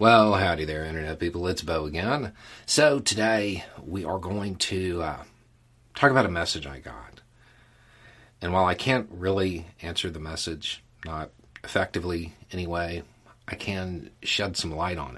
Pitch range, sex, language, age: 80-110 Hz, male, English, 40-59